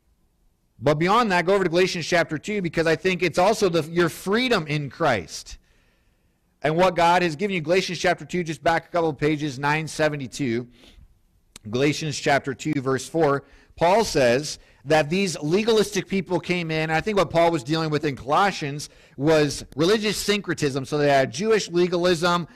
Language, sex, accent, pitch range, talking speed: English, male, American, 115-175 Hz, 175 wpm